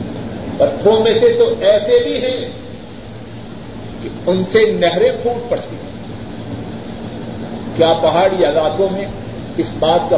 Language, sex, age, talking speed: Urdu, male, 50-69, 120 wpm